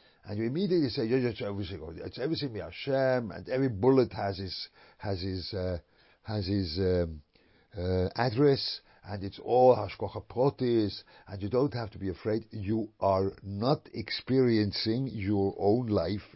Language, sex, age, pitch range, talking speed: English, male, 50-69, 100-125 Hz, 135 wpm